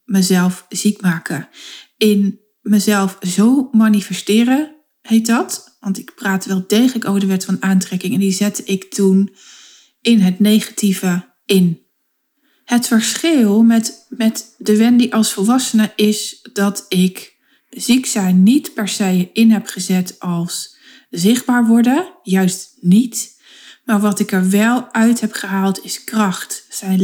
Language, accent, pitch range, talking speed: Dutch, Dutch, 190-225 Hz, 140 wpm